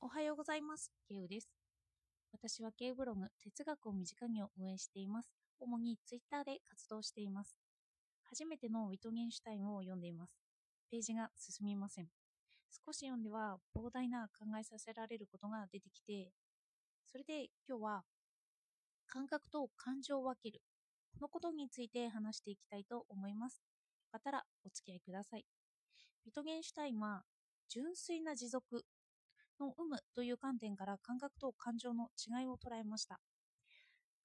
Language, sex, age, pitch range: Japanese, female, 20-39, 205-275 Hz